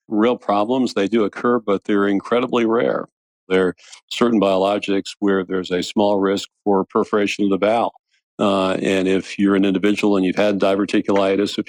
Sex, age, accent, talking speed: male, 50-69, American, 175 wpm